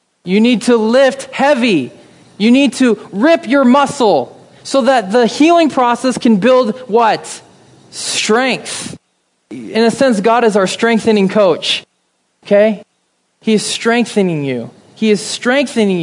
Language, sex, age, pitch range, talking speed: English, male, 20-39, 180-235 Hz, 135 wpm